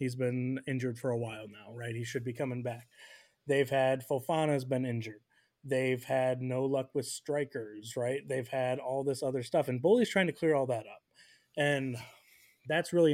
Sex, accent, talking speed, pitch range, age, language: male, American, 190 wpm, 130-160 Hz, 20-39, English